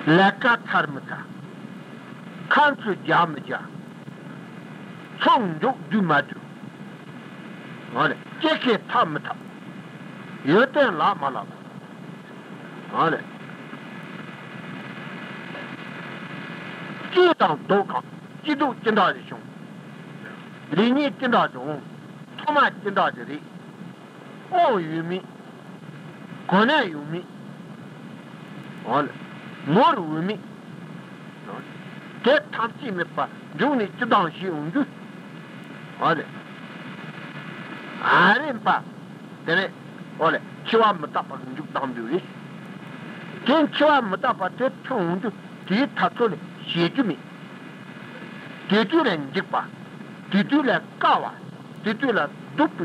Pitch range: 185-220 Hz